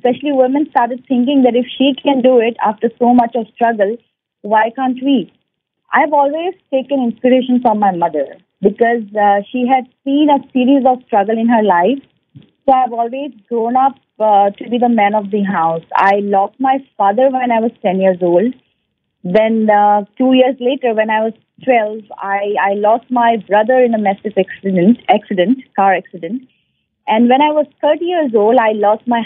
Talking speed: 190 wpm